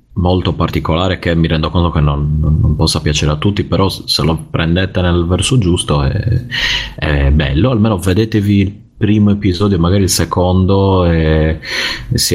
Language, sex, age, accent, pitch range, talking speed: Italian, male, 30-49, native, 75-90 Hz, 160 wpm